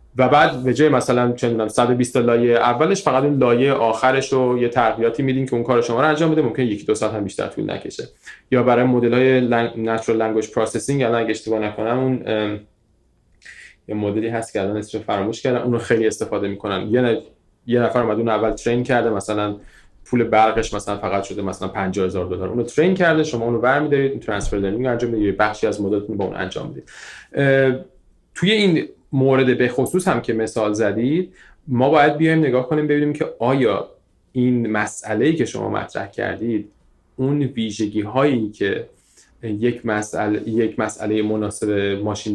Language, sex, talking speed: Persian, male, 175 wpm